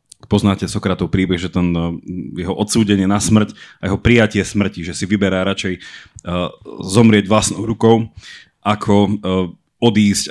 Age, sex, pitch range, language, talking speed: 30-49, male, 95-115 Hz, Slovak, 130 wpm